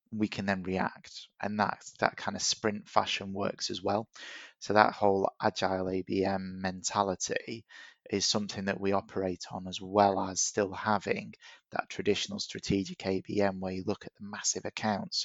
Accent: British